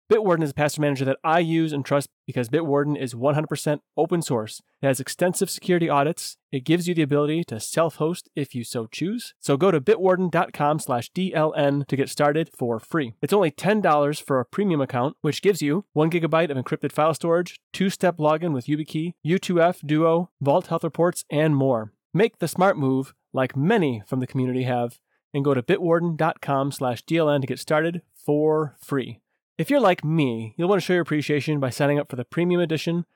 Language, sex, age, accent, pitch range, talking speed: English, male, 30-49, American, 135-170 Hz, 195 wpm